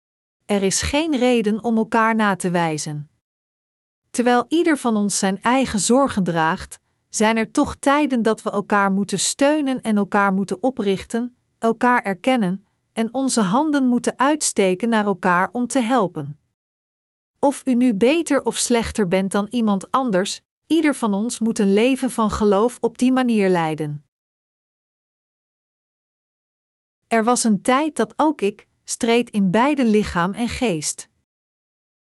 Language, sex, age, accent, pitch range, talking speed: Dutch, female, 40-59, Dutch, 195-245 Hz, 145 wpm